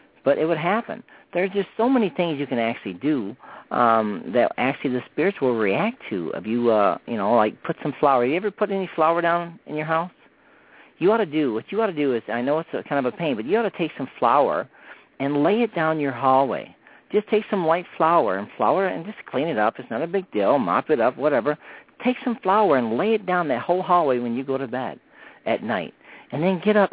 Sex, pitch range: male, 135-195 Hz